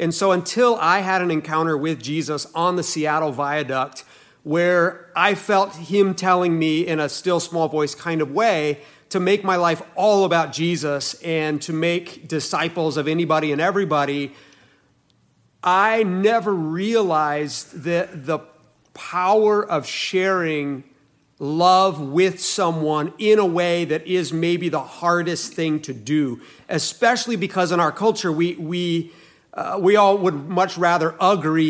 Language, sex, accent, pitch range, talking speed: English, male, American, 155-185 Hz, 150 wpm